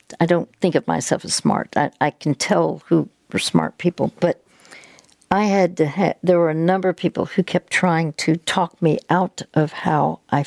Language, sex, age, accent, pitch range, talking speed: English, female, 60-79, American, 150-180 Hz, 205 wpm